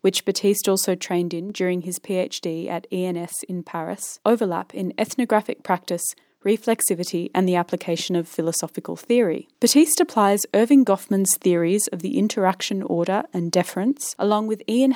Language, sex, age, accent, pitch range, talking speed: English, female, 20-39, Australian, 180-220 Hz, 150 wpm